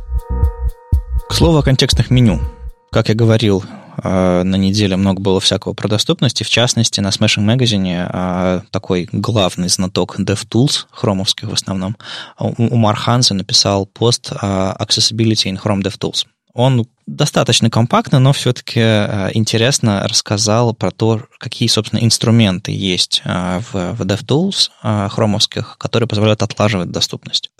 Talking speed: 120 wpm